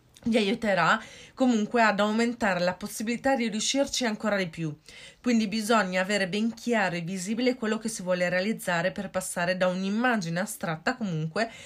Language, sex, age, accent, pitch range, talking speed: Italian, female, 30-49, native, 175-220 Hz, 155 wpm